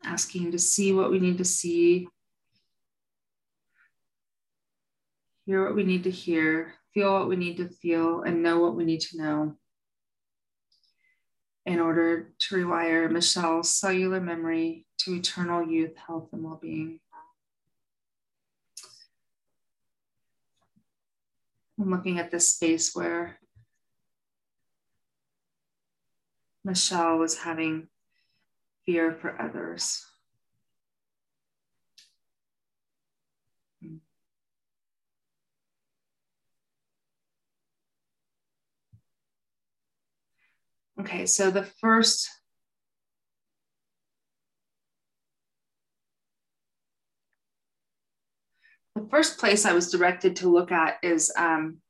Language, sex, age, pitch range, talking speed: English, female, 30-49, 165-190 Hz, 80 wpm